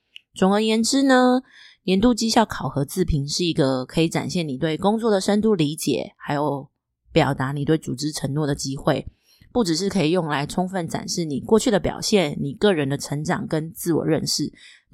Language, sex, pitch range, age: Chinese, female, 155-195 Hz, 20-39